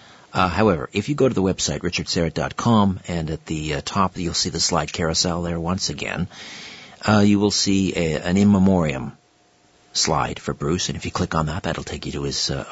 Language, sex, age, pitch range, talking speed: English, male, 50-69, 80-105 Hz, 210 wpm